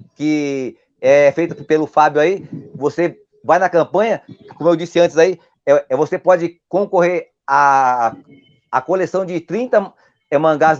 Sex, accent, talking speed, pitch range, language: male, Brazilian, 150 wpm, 145-185 Hz, Portuguese